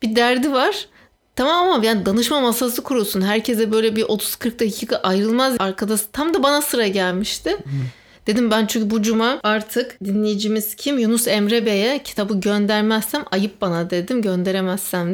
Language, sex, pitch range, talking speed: Turkish, female, 210-275 Hz, 150 wpm